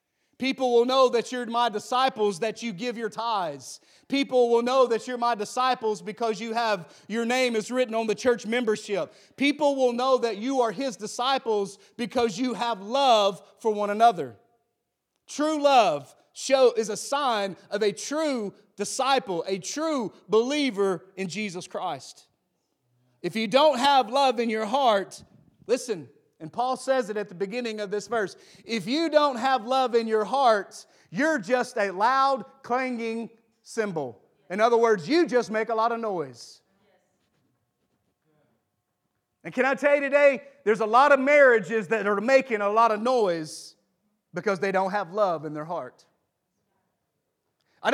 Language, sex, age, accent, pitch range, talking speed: English, male, 40-59, American, 210-265 Hz, 165 wpm